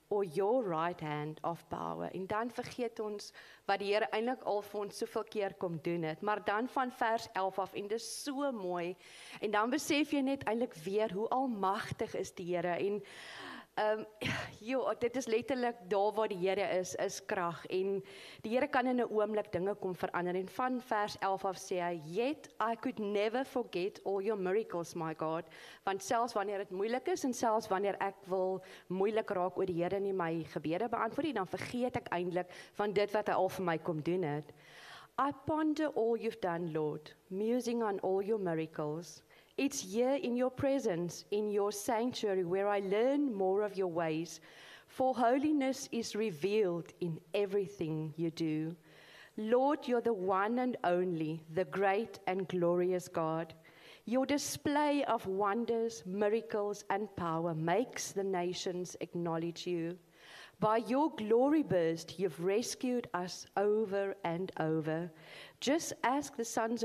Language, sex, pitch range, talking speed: English, female, 175-230 Hz, 165 wpm